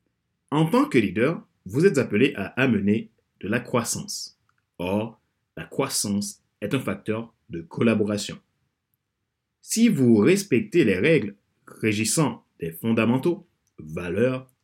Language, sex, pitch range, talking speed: French, male, 95-130 Hz, 120 wpm